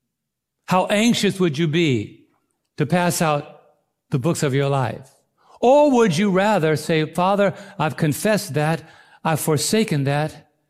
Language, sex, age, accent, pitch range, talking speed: English, male, 60-79, American, 135-175 Hz, 140 wpm